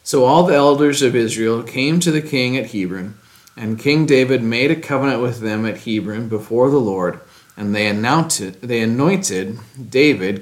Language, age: English, 40-59